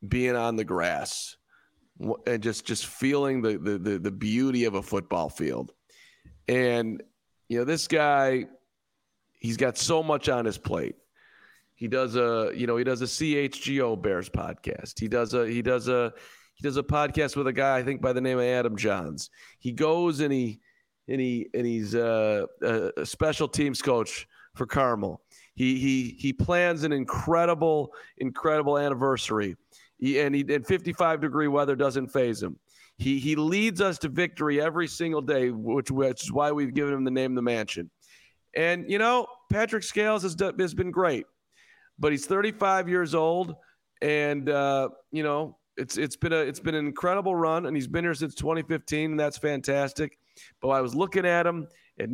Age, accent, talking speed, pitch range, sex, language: 40-59, American, 180 wpm, 125-160 Hz, male, English